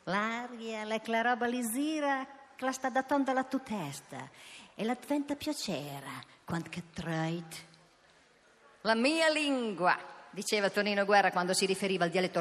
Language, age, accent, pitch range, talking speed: Italian, 50-69, native, 175-245 Hz, 120 wpm